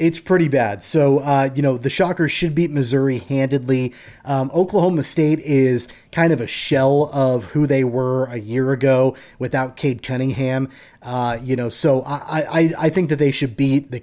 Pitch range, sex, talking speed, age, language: 130-155 Hz, male, 190 wpm, 30-49, English